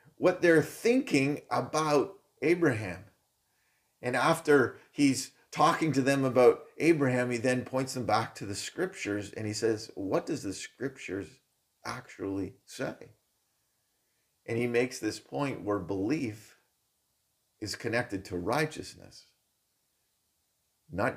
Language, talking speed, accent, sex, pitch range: English, 120 wpm, American, male, 130-170 Hz